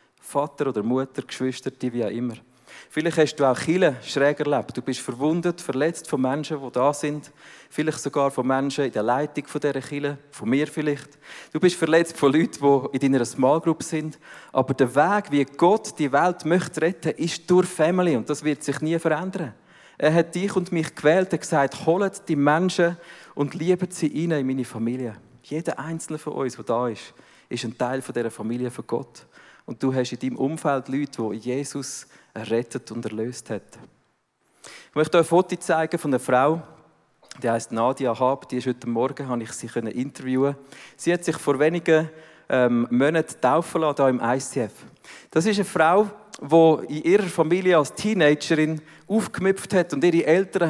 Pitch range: 130-165 Hz